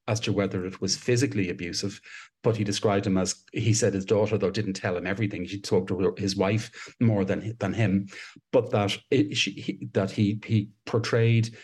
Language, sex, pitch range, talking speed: English, male, 95-115 Hz, 200 wpm